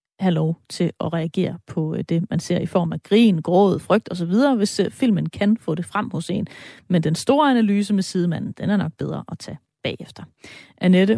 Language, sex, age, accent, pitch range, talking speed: Danish, female, 30-49, native, 170-215 Hz, 205 wpm